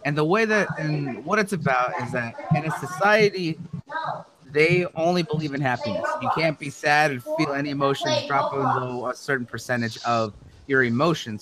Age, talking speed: 30-49, 180 wpm